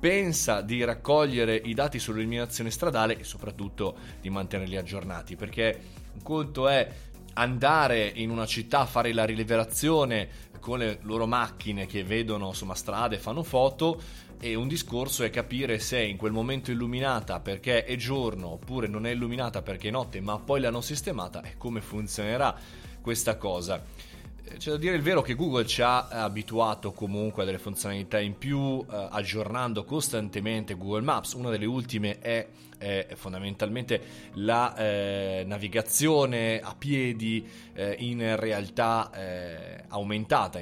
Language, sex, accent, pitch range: Italian, male, native, 100-120 Hz